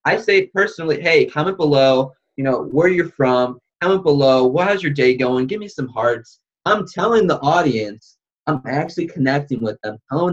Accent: American